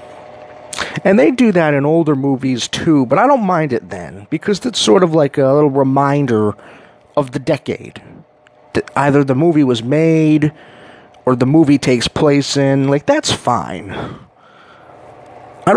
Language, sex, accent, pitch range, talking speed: English, male, American, 120-155 Hz, 155 wpm